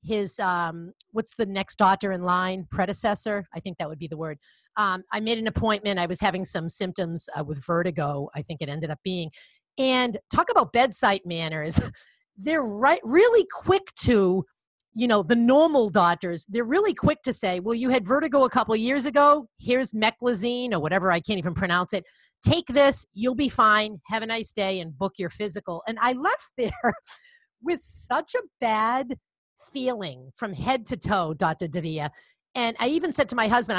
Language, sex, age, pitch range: English, female, 40-59, 185-260 Hz